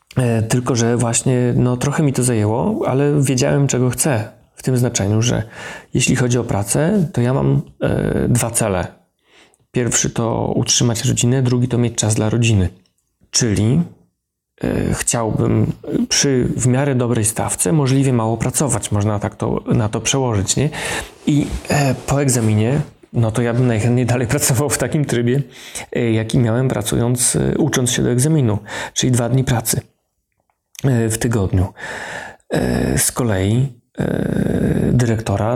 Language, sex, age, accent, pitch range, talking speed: Polish, male, 40-59, native, 115-130 Hz, 145 wpm